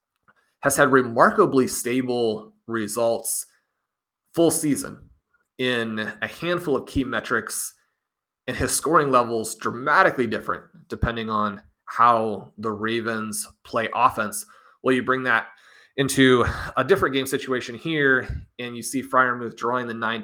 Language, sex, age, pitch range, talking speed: English, male, 30-49, 115-130 Hz, 130 wpm